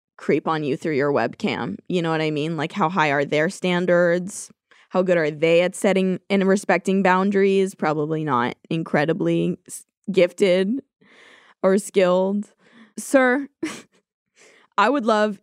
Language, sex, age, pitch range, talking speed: English, female, 20-39, 175-230 Hz, 140 wpm